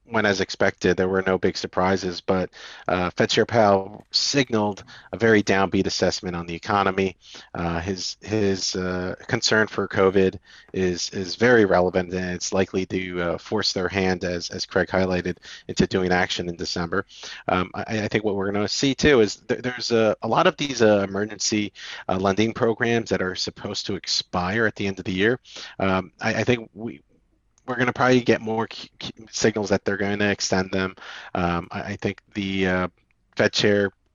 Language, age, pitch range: English, 40-59, 90-110 Hz